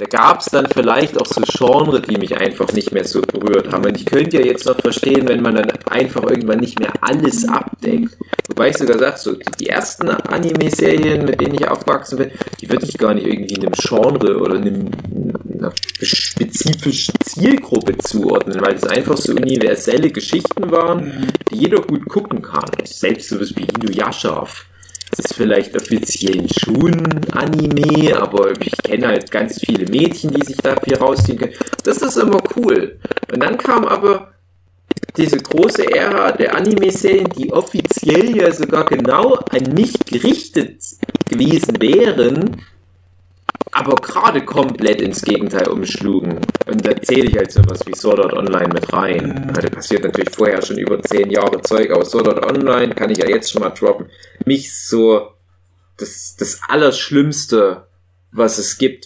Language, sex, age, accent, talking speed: German, male, 30-49, German, 170 wpm